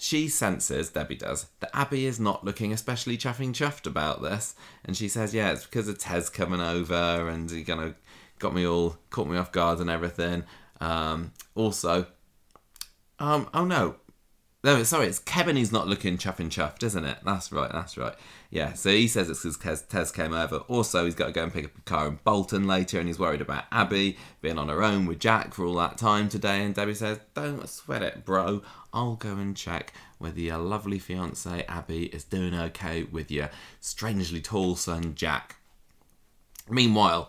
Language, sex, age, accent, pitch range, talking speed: English, male, 20-39, British, 85-110 Hz, 195 wpm